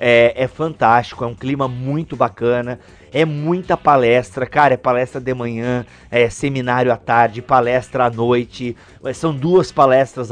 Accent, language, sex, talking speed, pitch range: Brazilian, Portuguese, male, 150 wpm, 125-170 Hz